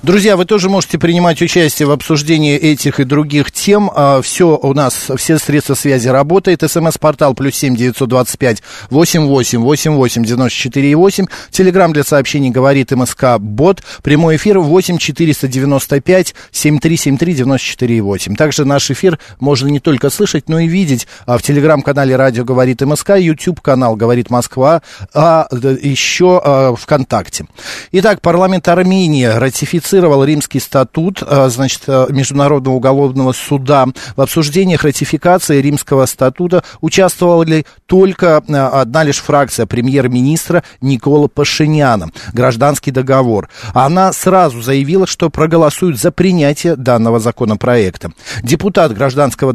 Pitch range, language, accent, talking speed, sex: 130-165 Hz, Russian, native, 125 wpm, male